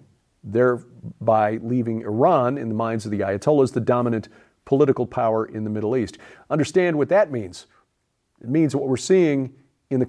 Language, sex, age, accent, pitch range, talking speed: English, male, 50-69, American, 120-155 Hz, 165 wpm